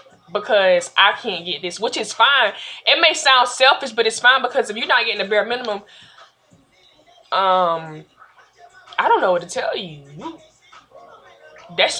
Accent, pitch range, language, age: American, 180-265 Hz, English, 20-39